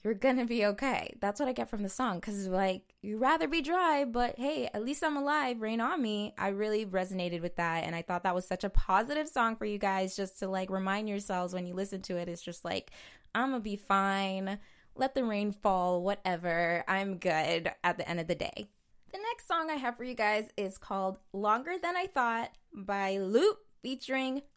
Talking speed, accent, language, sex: 220 wpm, American, English, female